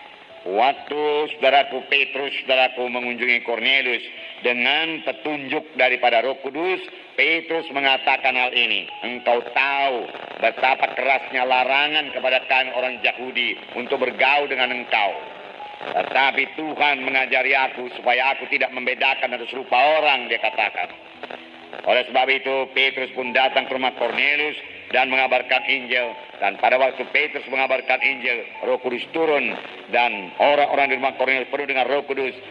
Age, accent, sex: 50-69, Indonesian, male